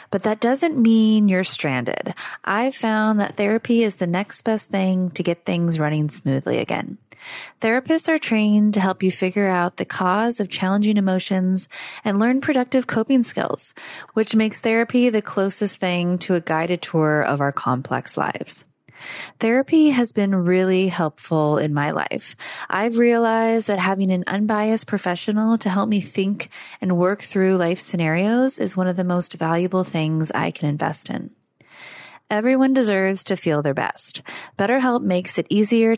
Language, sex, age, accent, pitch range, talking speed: English, female, 20-39, American, 185-230 Hz, 165 wpm